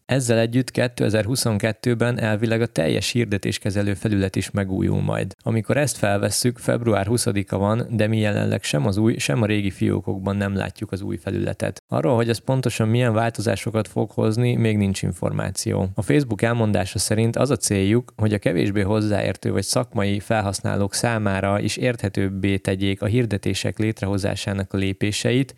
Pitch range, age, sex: 100-115 Hz, 20-39, male